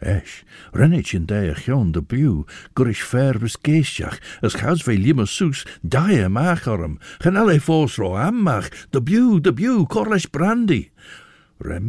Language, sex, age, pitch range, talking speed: English, male, 60-79, 85-125 Hz, 145 wpm